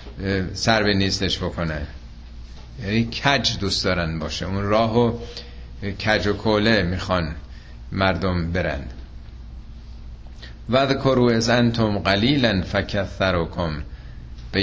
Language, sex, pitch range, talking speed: Persian, male, 85-115 Hz, 105 wpm